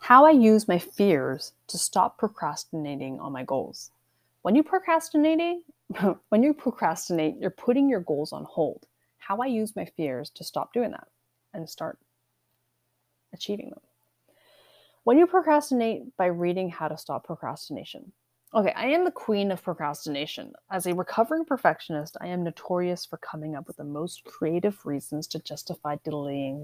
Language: English